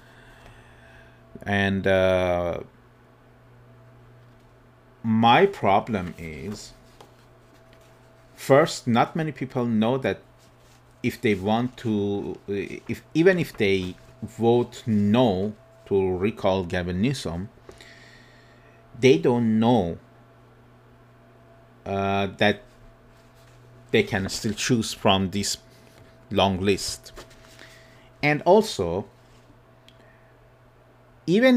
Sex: male